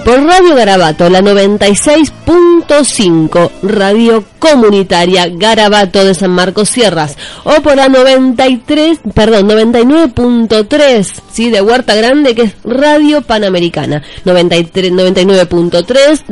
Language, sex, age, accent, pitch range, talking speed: Spanish, female, 30-49, Argentinian, 175-245 Hz, 100 wpm